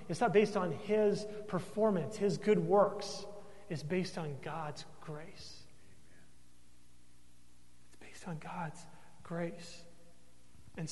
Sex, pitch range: male, 160-205 Hz